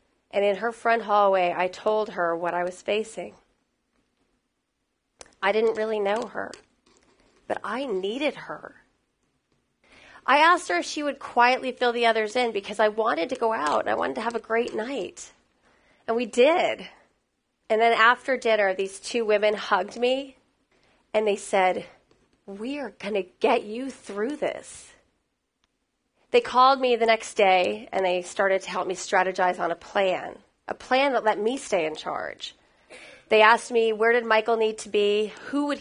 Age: 30-49